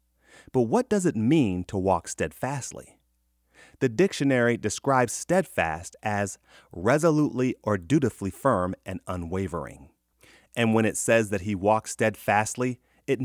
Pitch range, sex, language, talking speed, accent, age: 85-125 Hz, male, English, 125 wpm, American, 30-49